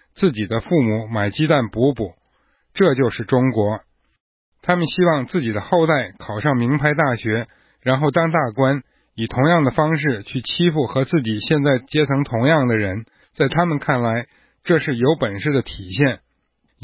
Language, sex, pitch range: Chinese, male, 120-160 Hz